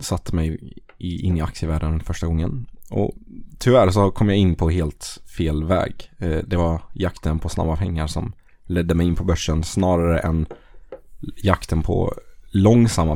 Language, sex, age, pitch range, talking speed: Swedish, male, 20-39, 85-105 Hz, 155 wpm